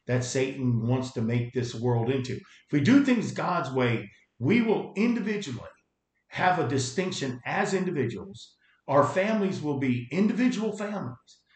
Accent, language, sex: American, English, male